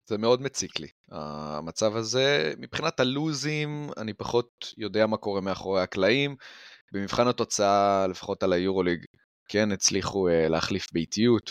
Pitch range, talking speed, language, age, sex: 95-130 Hz, 125 wpm, Hebrew, 20-39, male